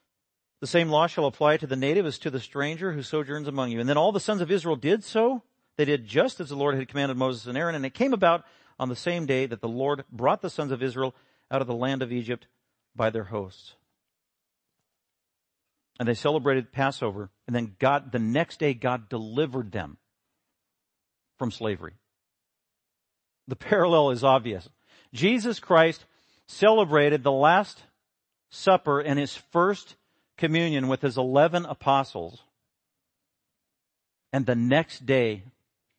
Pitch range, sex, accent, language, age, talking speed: 115-145 Hz, male, American, English, 50-69, 165 wpm